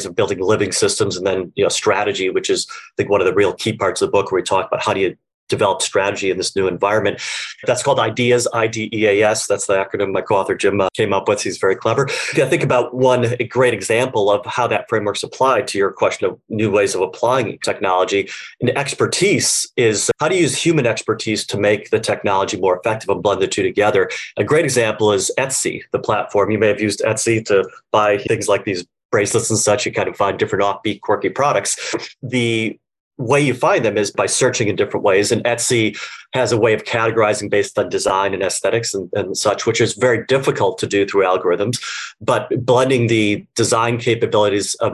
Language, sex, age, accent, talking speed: English, male, 30-49, American, 215 wpm